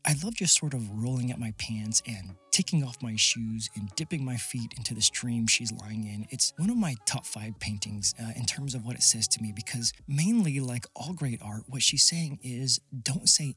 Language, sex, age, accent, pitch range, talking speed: English, male, 30-49, American, 110-140 Hz, 230 wpm